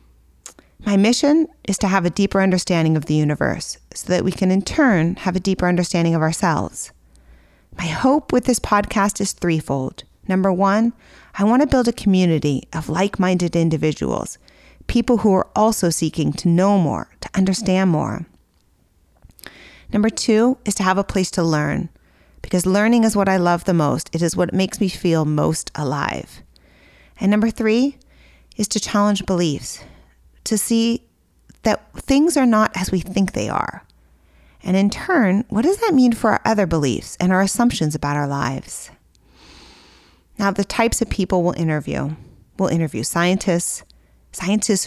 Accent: American